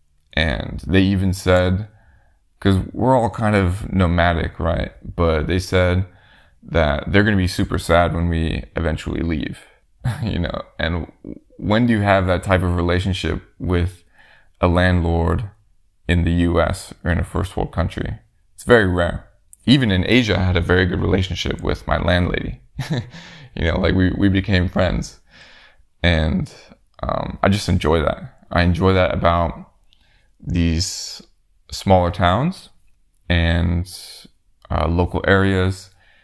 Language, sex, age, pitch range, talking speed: English, male, 20-39, 85-95 Hz, 145 wpm